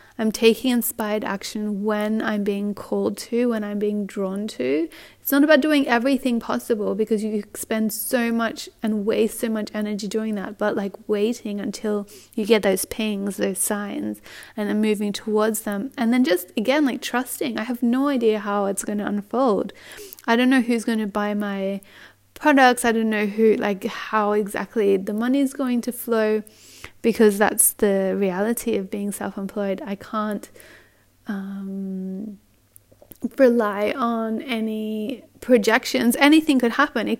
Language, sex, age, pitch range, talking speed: English, female, 30-49, 205-245 Hz, 165 wpm